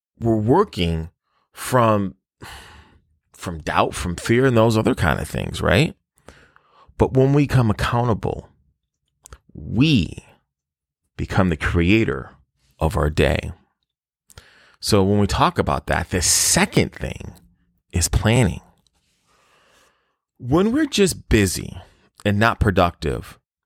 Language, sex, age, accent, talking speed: English, male, 30-49, American, 110 wpm